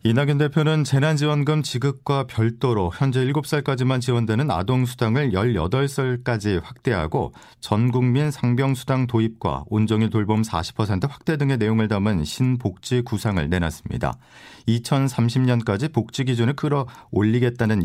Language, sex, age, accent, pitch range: Korean, male, 40-59, native, 105-135 Hz